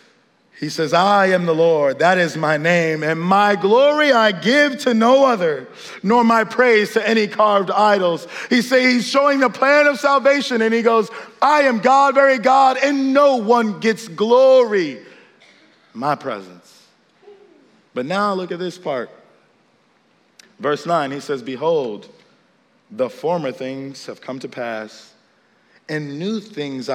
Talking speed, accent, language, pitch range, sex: 155 wpm, American, English, 170-240 Hz, male